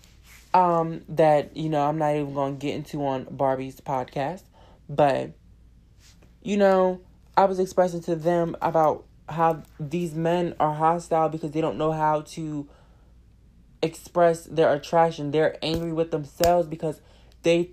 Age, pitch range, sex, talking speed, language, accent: 20-39, 140-165 Hz, male, 140 wpm, English, American